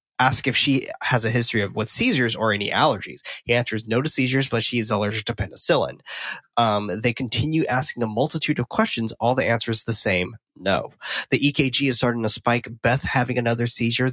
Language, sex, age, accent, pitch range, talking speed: English, male, 20-39, American, 110-130 Hz, 200 wpm